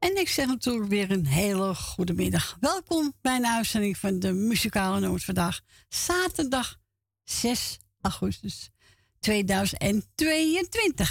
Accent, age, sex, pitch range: Dutch, 60-79, female, 180-295 Hz